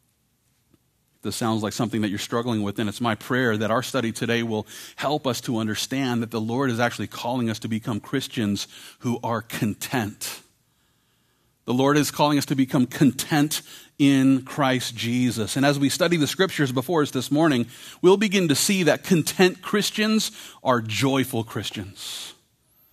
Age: 40-59